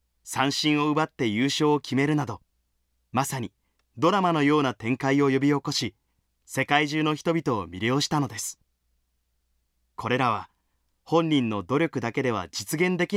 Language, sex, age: Japanese, male, 30-49